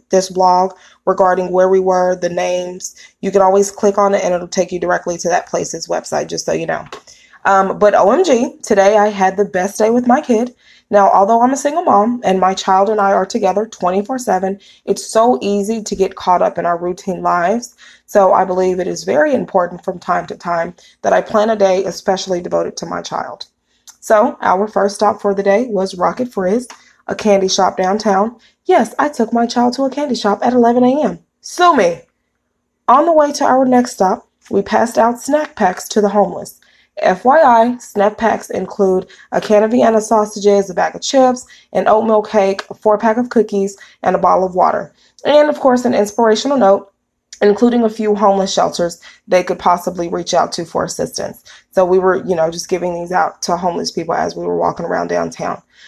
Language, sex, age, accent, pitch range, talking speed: English, female, 20-39, American, 185-235 Hz, 205 wpm